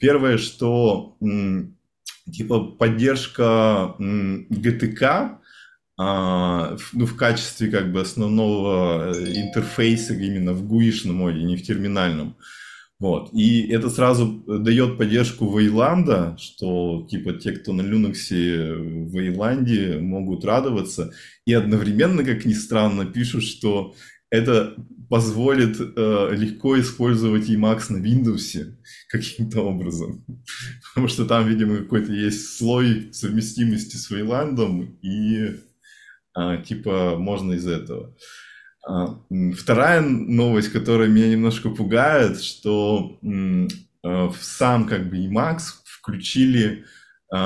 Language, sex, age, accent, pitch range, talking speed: Russian, male, 20-39, native, 95-120 Hz, 105 wpm